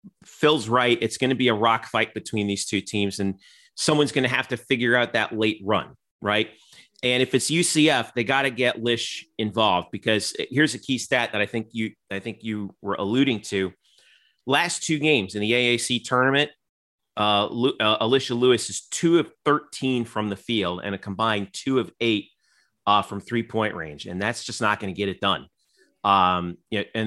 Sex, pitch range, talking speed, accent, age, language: male, 105-130 Hz, 205 wpm, American, 30-49, English